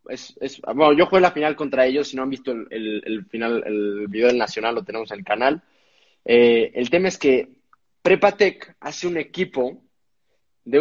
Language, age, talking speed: Spanish, 20-39, 200 wpm